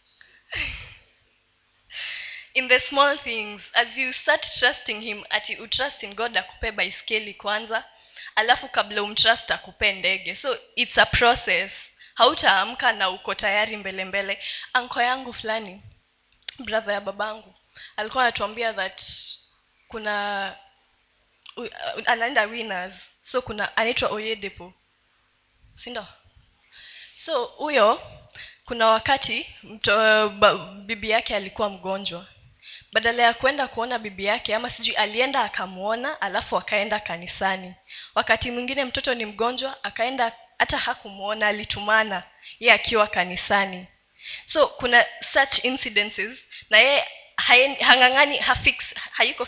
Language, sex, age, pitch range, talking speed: Swahili, female, 10-29, 205-245 Hz, 115 wpm